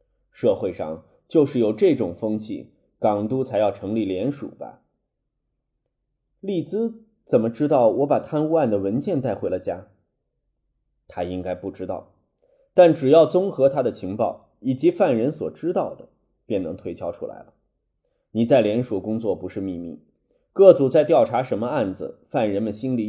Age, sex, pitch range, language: 20-39, male, 110-170 Hz, Chinese